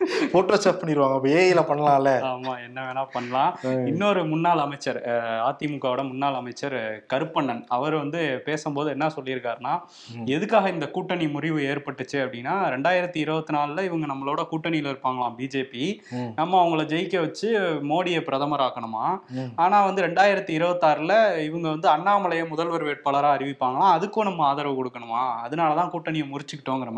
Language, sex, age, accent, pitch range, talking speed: Tamil, male, 20-39, native, 130-165 Hz, 100 wpm